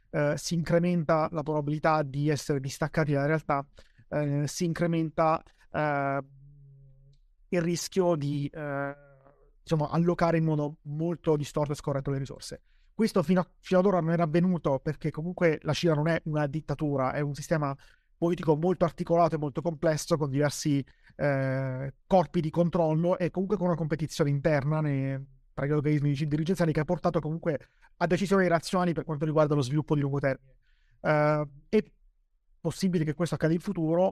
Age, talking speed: 30-49, 155 wpm